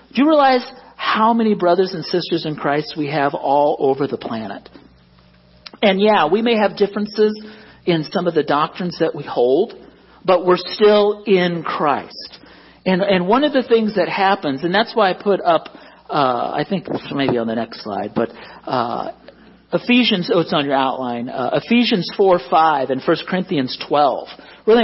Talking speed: 180 wpm